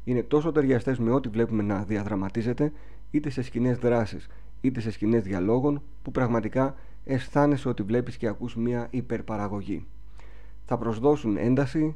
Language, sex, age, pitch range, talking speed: Greek, male, 40-59, 110-135 Hz, 140 wpm